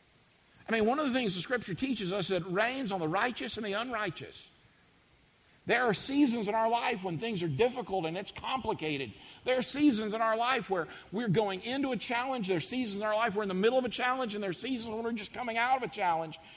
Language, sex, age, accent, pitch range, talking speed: English, male, 50-69, American, 195-245 Hz, 250 wpm